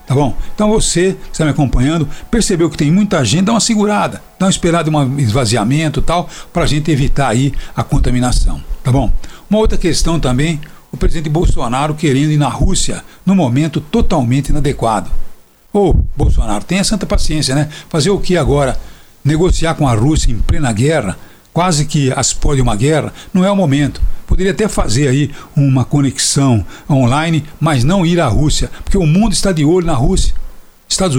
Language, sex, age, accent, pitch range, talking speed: Portuguese, male, 60-79, Brazilian, 130-170 Hz, 185 wpm